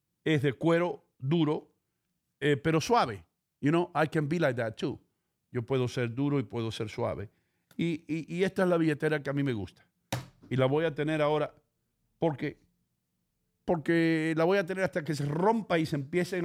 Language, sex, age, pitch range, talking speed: English, male, 50-69, 130-160 Hz, 195 wpm